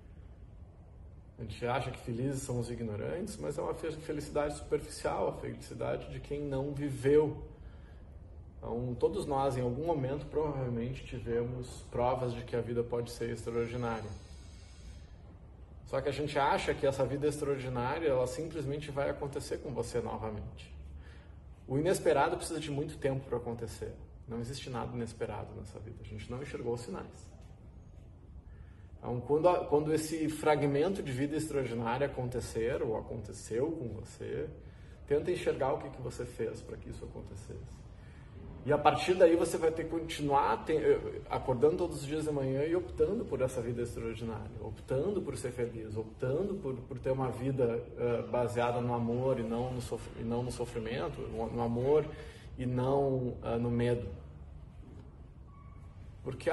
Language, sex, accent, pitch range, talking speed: Portuguese, male, Brazilian, 110-145 Hz, 150 wpm